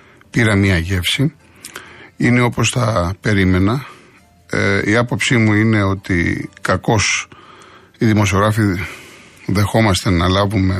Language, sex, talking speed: Greek, male, 105 wpm